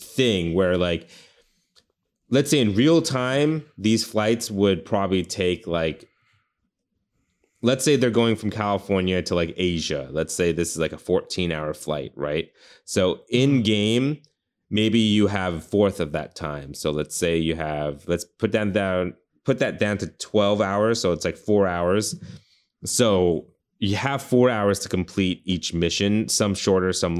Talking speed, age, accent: 170 wpm, 20-39, American